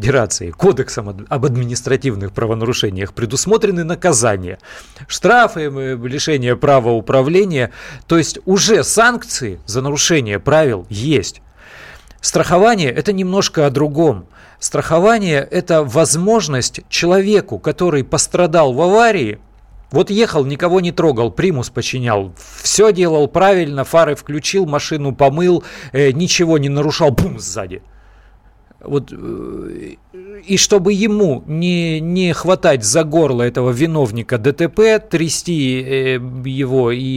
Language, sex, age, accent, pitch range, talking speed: Russian, male, 40-59, native, 125-170 Hz, 105 wpm